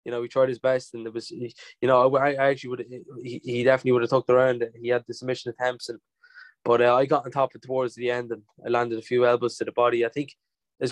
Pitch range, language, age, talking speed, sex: 120-140 Hz, English, 10-29, 275 wpm, male